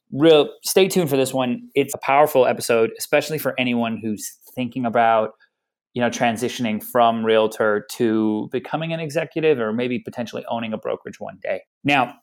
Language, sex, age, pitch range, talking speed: English, male, 30-49, 120-155 Hz, 165 wpm